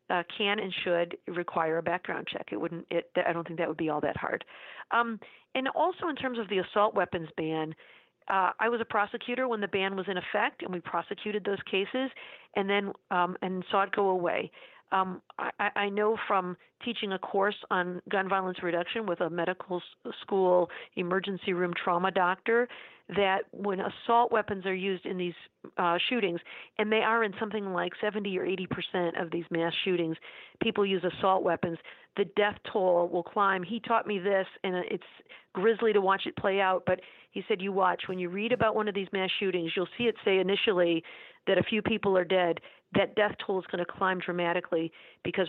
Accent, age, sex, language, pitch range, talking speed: American, 50-69, female, English, 175-210 Hz, 200 wpm